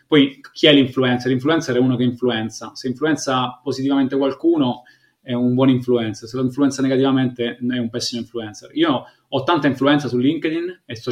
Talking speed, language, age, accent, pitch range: 180 wpm, Italian, 20-39, native, 120-140 Hz